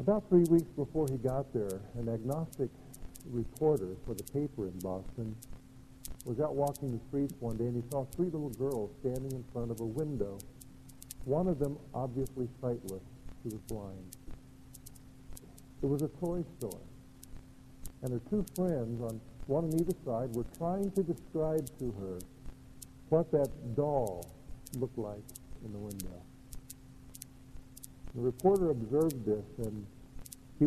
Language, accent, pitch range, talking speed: English, American, 120-145 Hz, 150 wpm